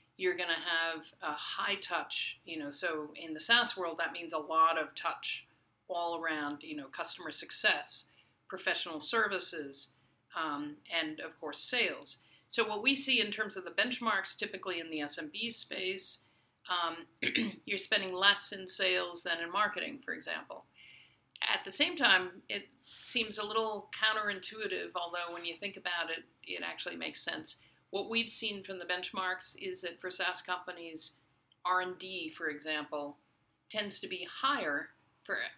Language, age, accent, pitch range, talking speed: English, 50-69, American, 160-205 Hz, 160 wpm